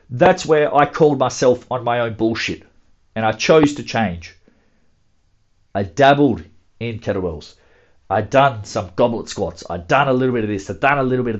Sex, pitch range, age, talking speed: male, 100-140 Hz, 40-59, 190 wpm